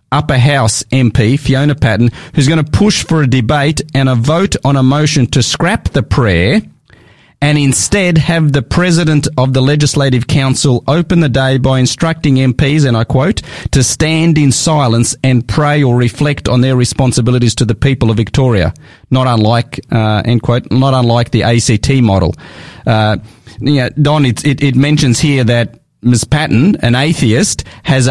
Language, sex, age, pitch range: English, male, 30-49, 120-145 Hz